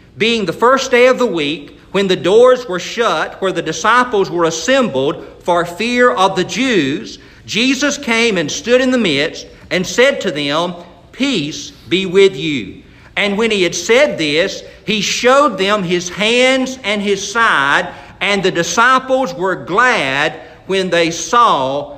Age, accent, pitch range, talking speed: 50-69, American, 180-245 Hz, 160 wpm